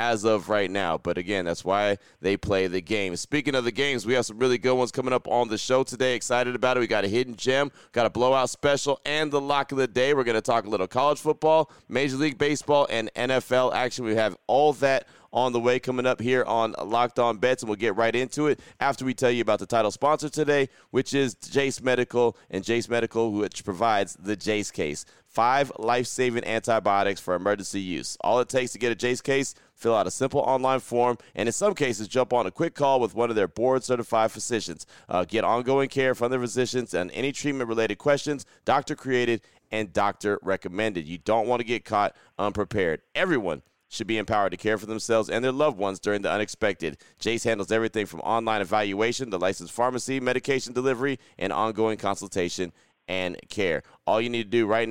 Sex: male